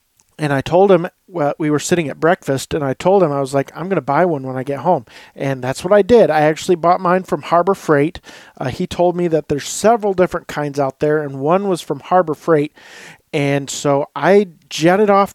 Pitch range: 140-175 Hz